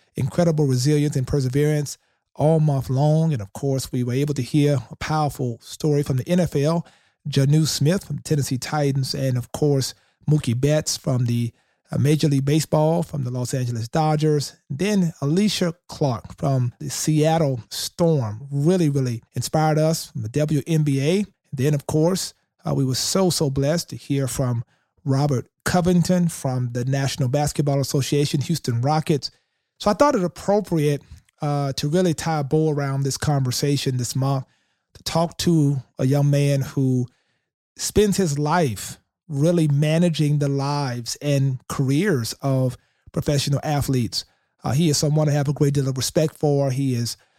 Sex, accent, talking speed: male, American, 160 wpm